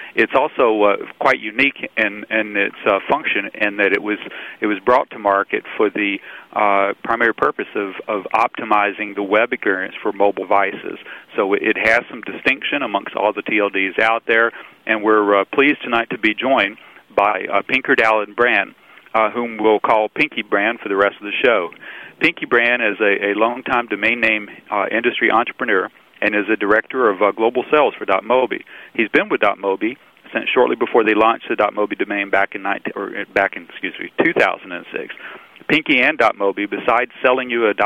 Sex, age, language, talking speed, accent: male, 40-59, English, 185 wpm, American